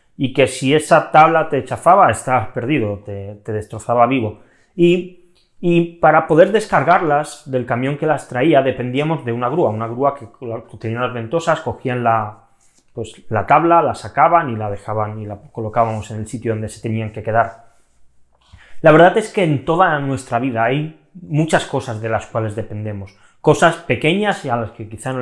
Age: 20-39